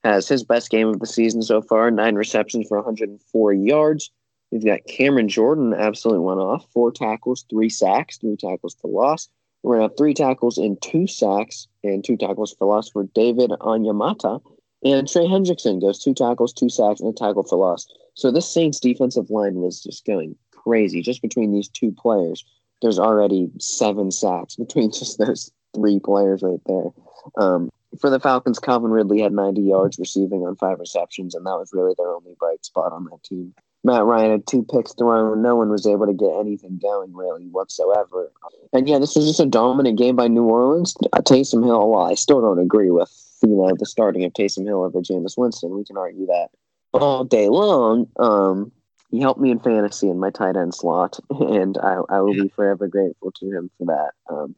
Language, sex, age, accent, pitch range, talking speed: English, male, 30-49, American, 100-125 Hz, 200 wpm